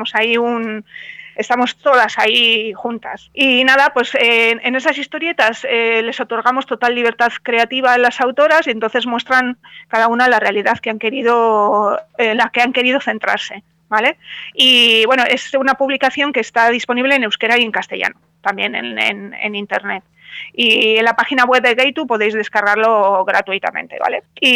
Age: 30-49